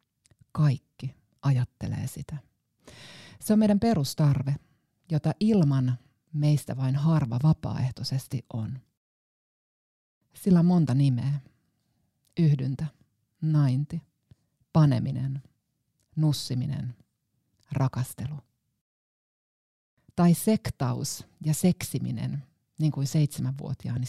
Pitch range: 125-155 Hz